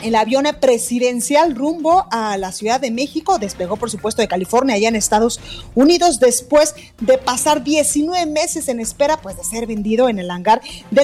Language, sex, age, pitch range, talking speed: Spanish, female, 30-49, 210-280 Hz, 180 wpm